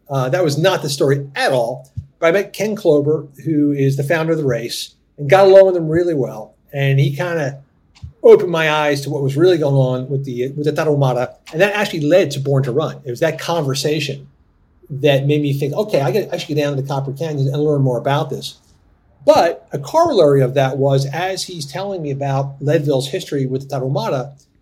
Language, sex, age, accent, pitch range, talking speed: English, male, 40-59, American, 140-175 Hz, 220 wpm